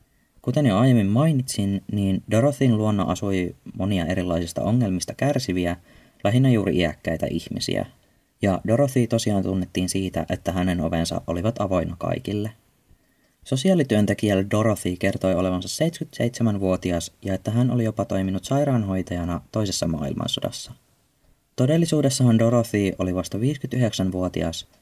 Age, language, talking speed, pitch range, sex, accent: 30-49, Finnish, 110 wpm, 90-120 Hz, male, native